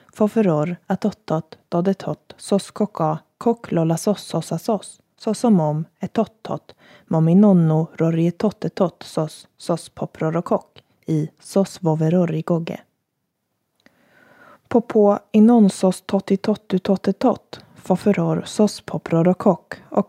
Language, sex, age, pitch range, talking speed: Swedish, female, 20-39, 165-205 Hz, 180 wpm